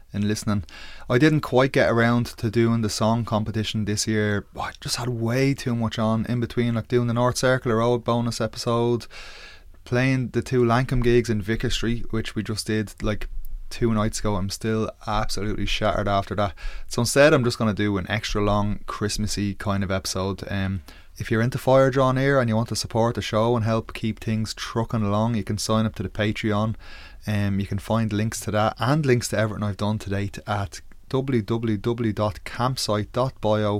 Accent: Irish